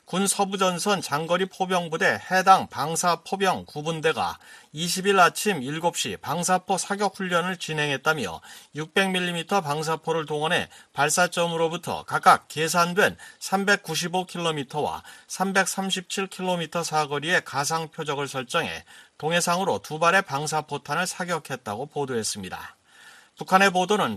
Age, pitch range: 40-59, 155-190 Hz